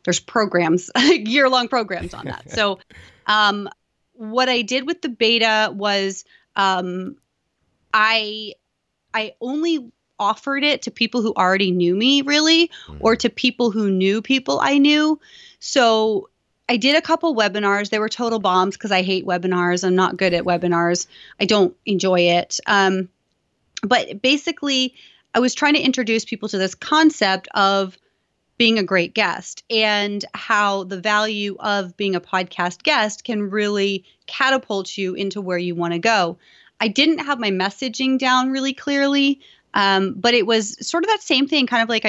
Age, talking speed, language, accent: 30-49, 165 wpm, English, American